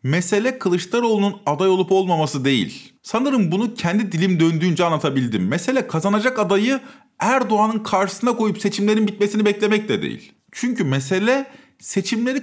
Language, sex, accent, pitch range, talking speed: Turkish, male, native, 175-230 Hz, 125 wpm